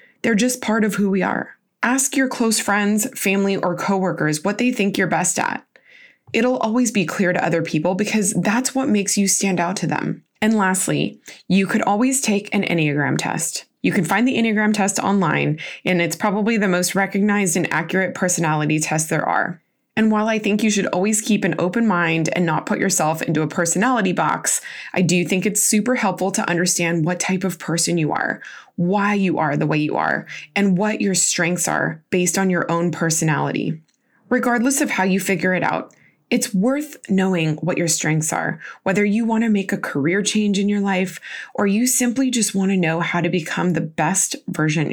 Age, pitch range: 20-39, 170-215 Hz